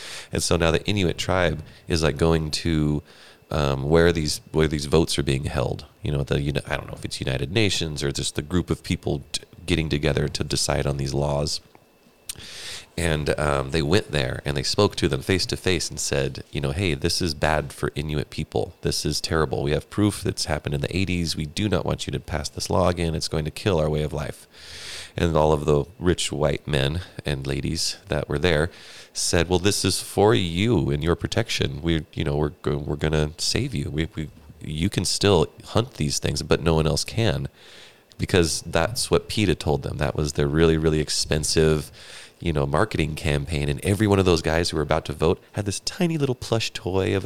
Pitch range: 75-95 Hz